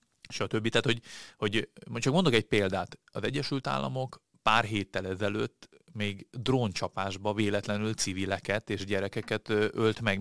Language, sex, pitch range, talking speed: Hungarian, male, 95-105 Hz, 140 wpm